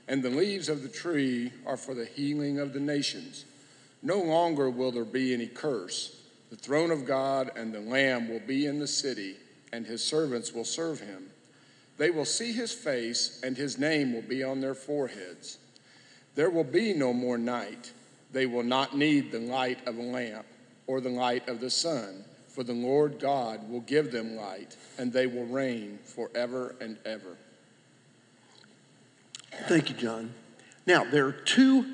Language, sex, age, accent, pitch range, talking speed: English, male, 50-69, American, 125-160 Hz, 175 wpm